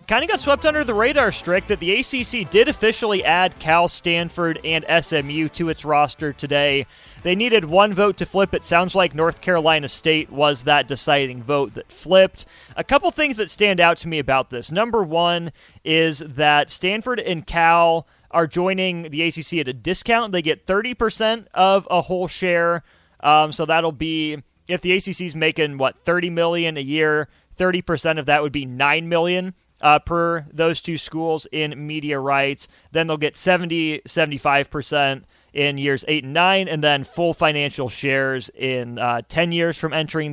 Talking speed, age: 180 wpm, 30-49